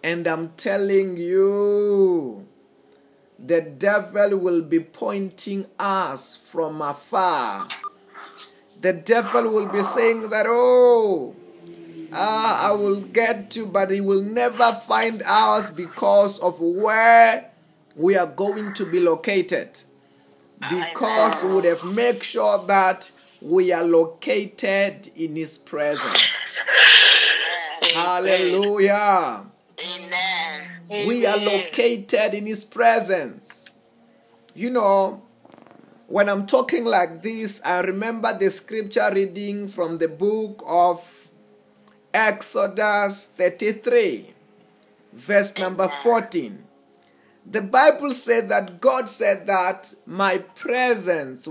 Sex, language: male, English